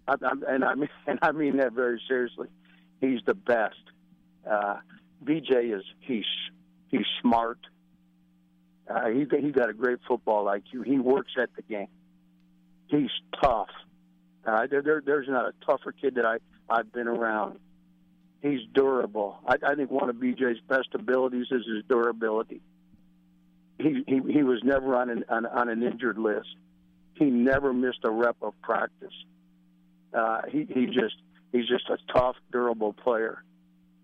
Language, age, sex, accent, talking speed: English, 60-79, male, American, 160 wpm